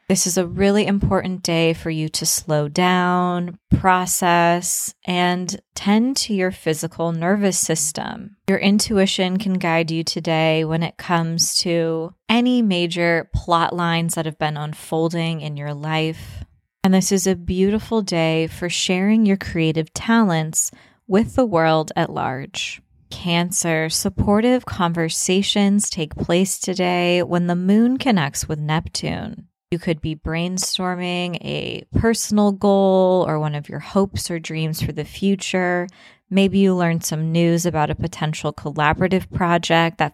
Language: English